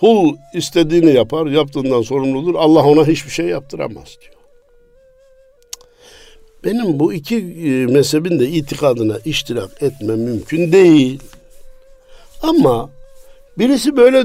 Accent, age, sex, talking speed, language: native, 60-79, male, 100 wpm, Turkish